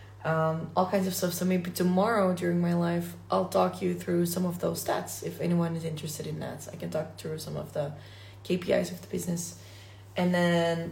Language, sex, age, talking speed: English, female, 20-39, 210 wpm